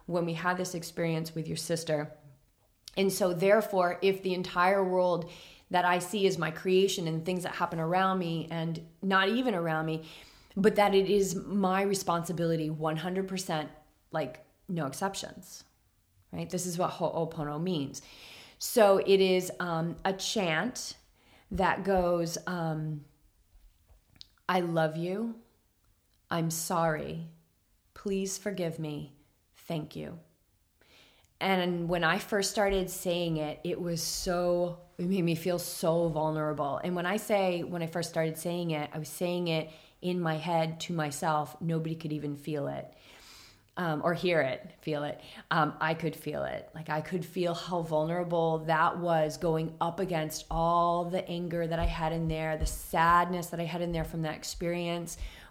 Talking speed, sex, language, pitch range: 160 wpm, female, English, 155-180 Hz